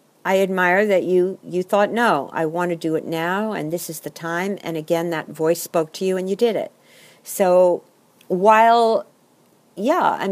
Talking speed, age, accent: 190 wpm, 50-69, American